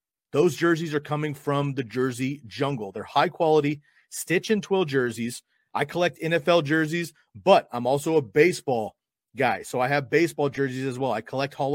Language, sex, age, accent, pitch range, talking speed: English, male, 30-49, American, 135-165 Hz, 180 wpm